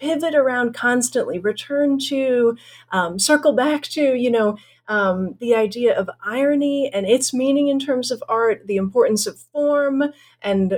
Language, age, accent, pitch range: English, 40-59, American, 210-275 Hz